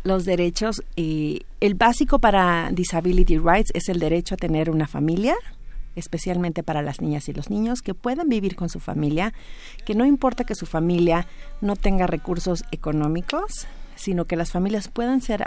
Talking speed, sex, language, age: 170 wpm, female, Spanish, 40-59